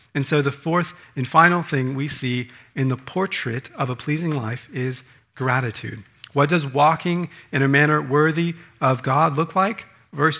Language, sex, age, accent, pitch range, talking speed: English, male, 40-59, American, 130-180 Hz, 175 wpm